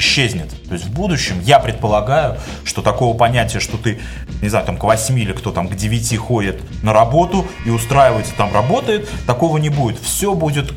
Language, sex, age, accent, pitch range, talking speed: Russian, male, 20-39, native, 115-165 Hz, 190 wpm